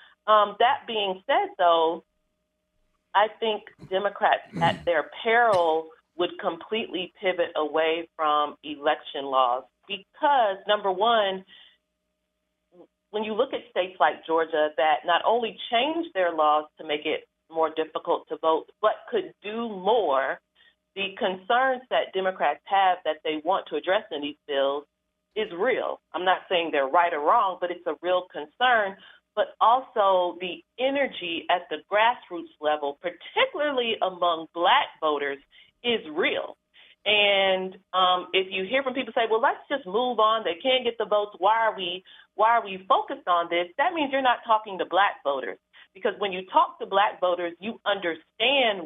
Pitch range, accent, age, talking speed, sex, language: 165-225 Hz, American, 40-59, 160 wpm, female, English